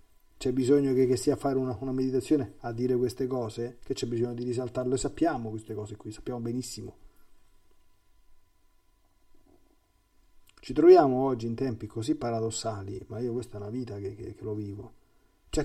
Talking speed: 170 wpm